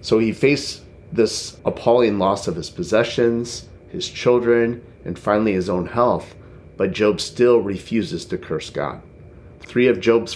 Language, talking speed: English, 150 wpm